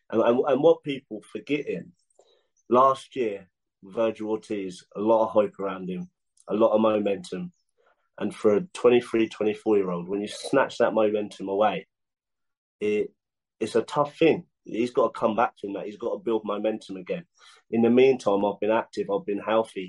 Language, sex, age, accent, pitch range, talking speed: English, male, 30-49, British, 100-130 Hz, 180 wpm